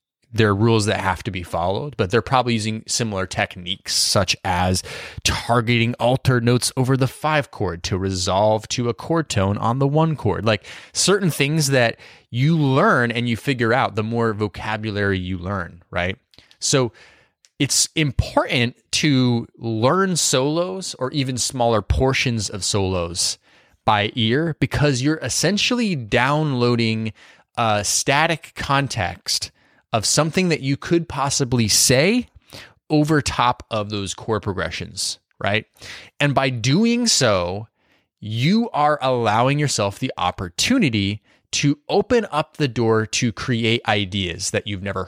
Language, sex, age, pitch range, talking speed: English, male, 20-39, 100-140 Hz, 140 wpm